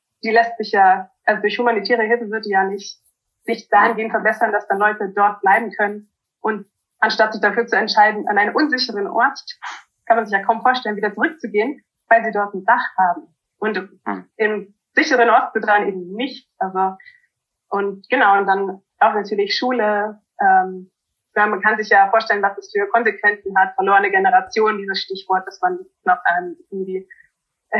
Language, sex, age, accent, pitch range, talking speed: German, female, 20-39, German, 190-225 Hz, 175 wpm